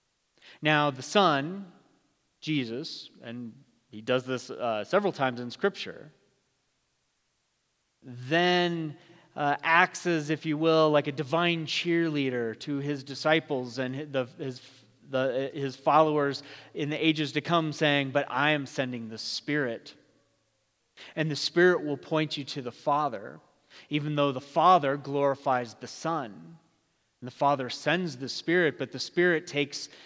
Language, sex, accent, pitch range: English, male, American, 130-165 Hz